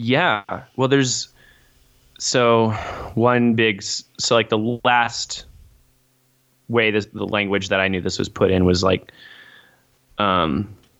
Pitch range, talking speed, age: 95-120 Hz, 130 wpm, 20-39